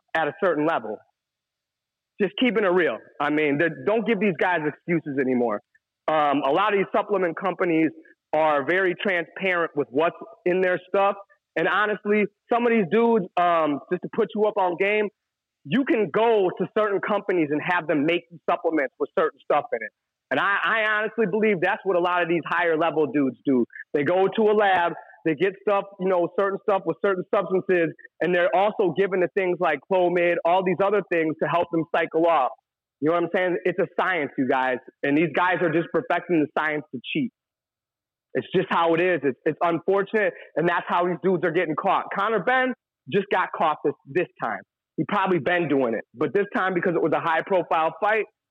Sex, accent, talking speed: male, American, 205 wpm